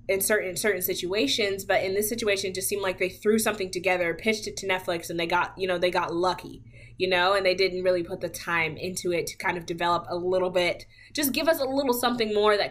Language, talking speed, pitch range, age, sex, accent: English, 255 wpm, 175-225 Hz, 20-39, female, American